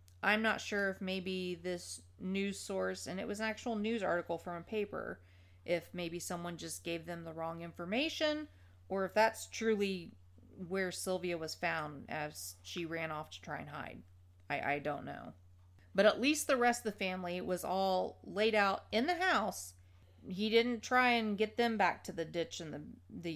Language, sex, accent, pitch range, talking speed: English, female, American, 155-215 Hz, 195 wpm